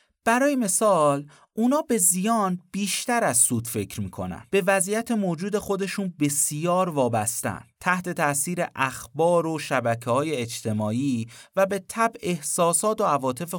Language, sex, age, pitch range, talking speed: Persian, male, 30-49, 120-185 Hz, 130 wpm